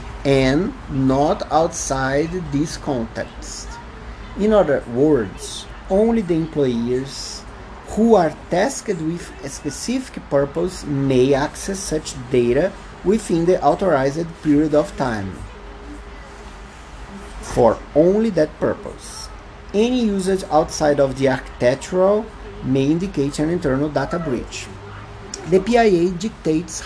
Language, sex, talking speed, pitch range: English, male, 105 wpm, 130-180 Hz